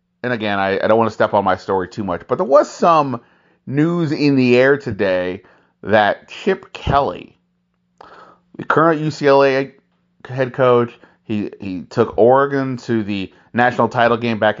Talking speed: 165 wpm